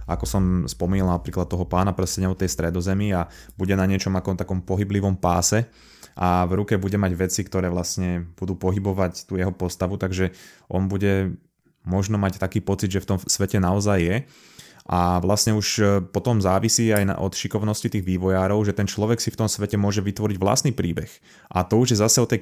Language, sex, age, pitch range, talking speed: Slovak, male, 20-39, 90-105 Hz, 190 wpm